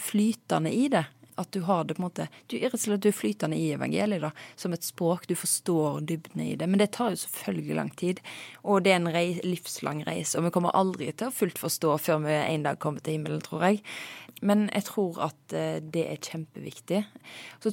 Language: English